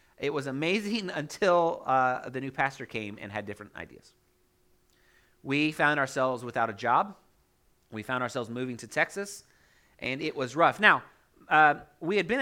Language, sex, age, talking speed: English, male, 30-49, 165 wpm